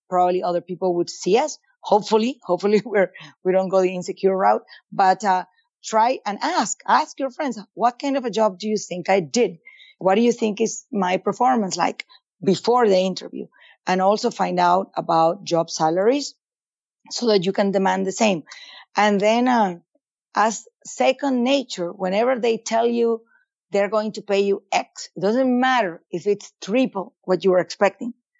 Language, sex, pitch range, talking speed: English, female, 185-245 Hz, 180 wpm